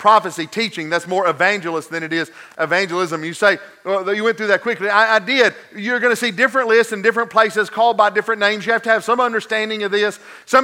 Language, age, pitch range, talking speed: English, 40-59, 185-225 Hz, 235 wpm